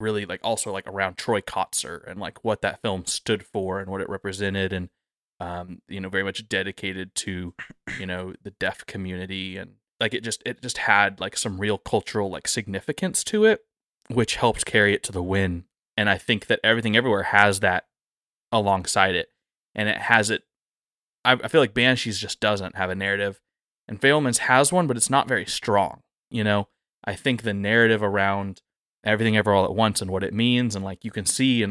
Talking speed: 205 wpm